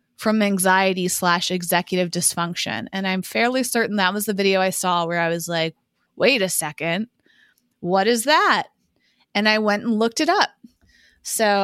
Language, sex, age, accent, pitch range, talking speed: English, female, 30-49, American, 180-225 Hz, 170 wpm